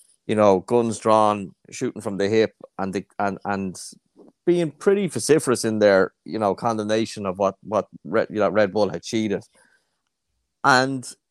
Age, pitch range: 30-49, 100-120 Hz